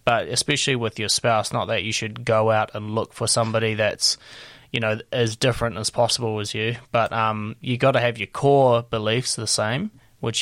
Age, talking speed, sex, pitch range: 20-39, 205 wpm, male, 110-120 Hz